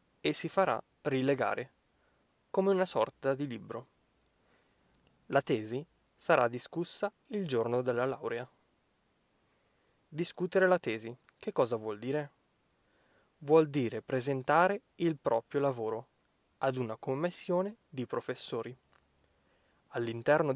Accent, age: native, 20-39